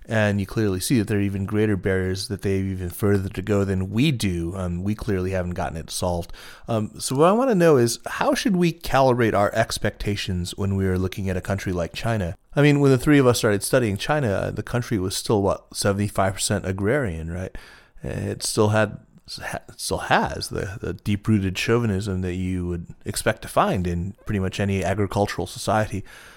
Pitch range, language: 95-110 Hz, English